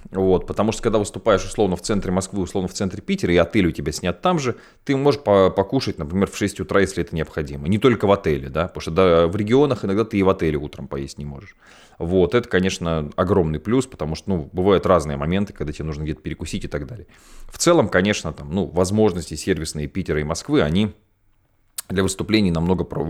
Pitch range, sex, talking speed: 80-105 Hz, male, 215 wpm